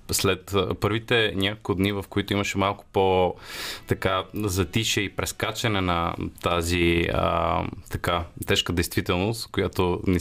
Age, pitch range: 30-49, 95-110 Hz